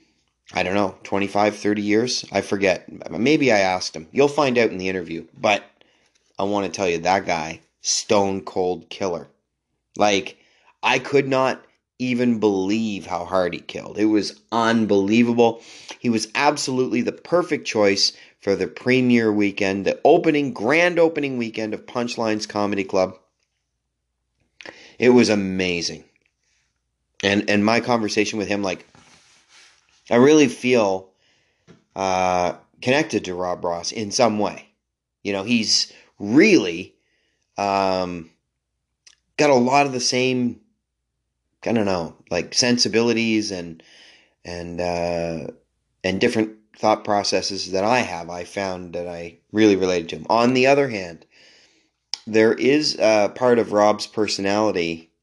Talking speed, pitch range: 135 wpm, 95-115 Hz